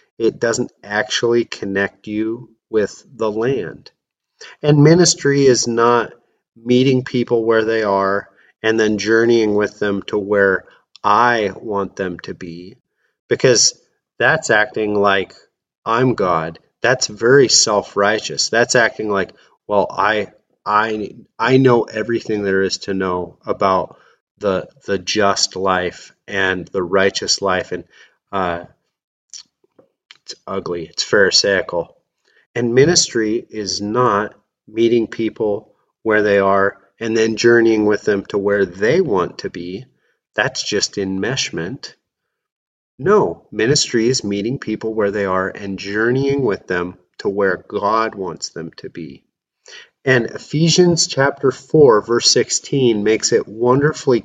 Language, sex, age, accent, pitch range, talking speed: English, male, 30-49, American, 100-120 Hz, 130 wpm